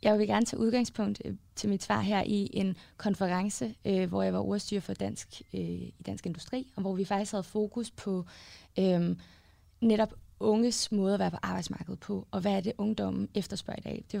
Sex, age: female, 20-39